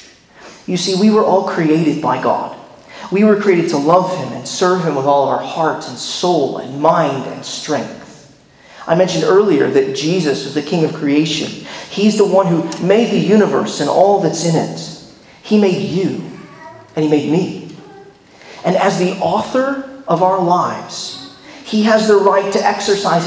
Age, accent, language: 40-59, American, English